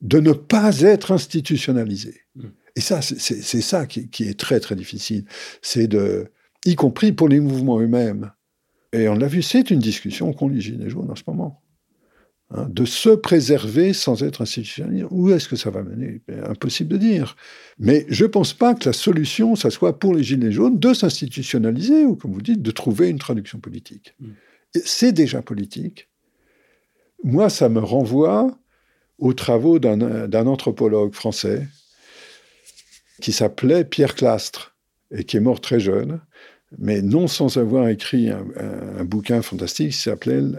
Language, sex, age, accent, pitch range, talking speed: French, male, 60-79, French, 115-185 Hz, 170 wpm